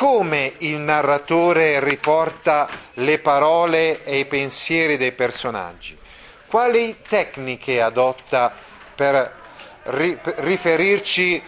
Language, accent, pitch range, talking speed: Italian, native, 130-170 Hz, 85 wpm